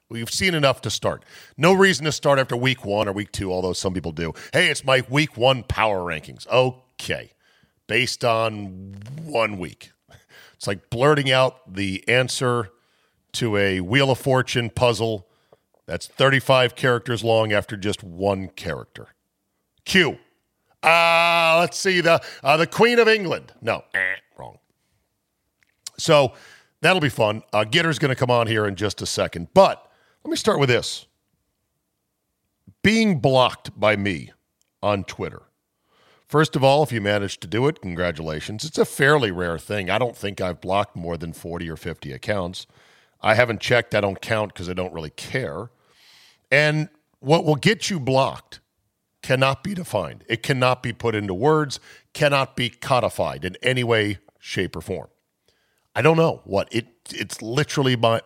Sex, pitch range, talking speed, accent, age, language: male, 100-140 Hz, 165 wpm, American, 50-69, English